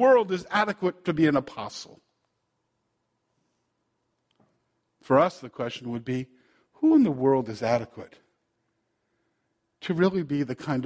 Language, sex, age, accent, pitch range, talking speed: English, male, 50-69, American, 175-220 Hz, 135 wpm